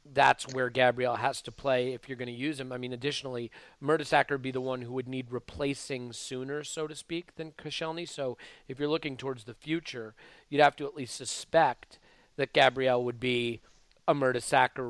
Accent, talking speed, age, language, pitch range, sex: American, 195 wpm, 30-49, English, 120-145 Hz, male